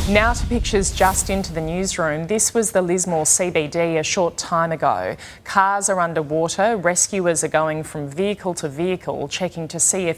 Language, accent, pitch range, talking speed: English, Australian, 150-180 Hz, 175 wpm